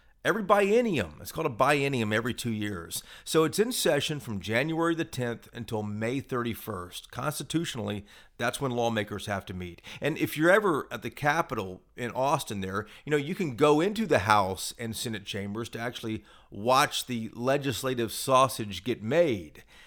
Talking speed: 170 wpm